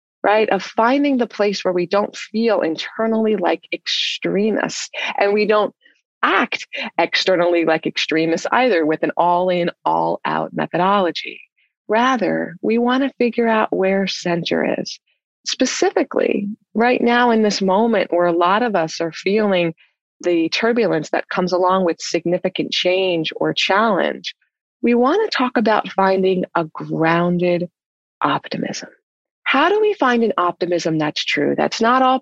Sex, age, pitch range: female, 30-49, 175-230 Hz